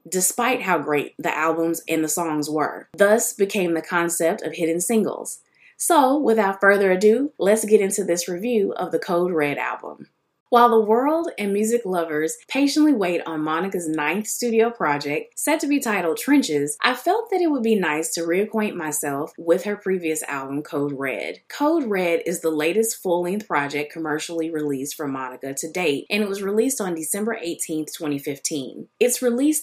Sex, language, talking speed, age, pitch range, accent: female, English, 175 wpm, 20-39, 155-225 Hz, American